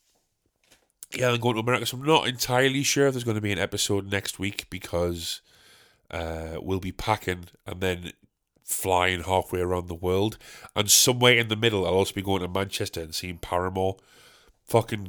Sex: male